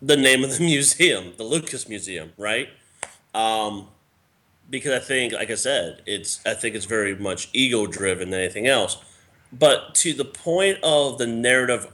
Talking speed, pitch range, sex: 170 wpm, 100-130 Hz, male